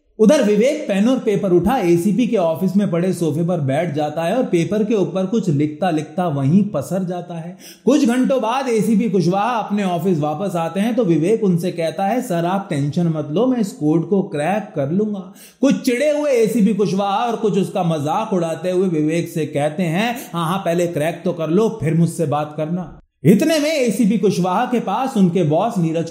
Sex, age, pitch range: male, 30-49, 155-210 Hz